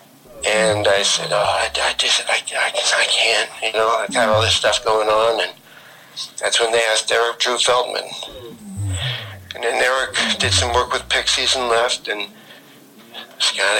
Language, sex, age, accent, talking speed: English, male, 60-79, American, 175 wpm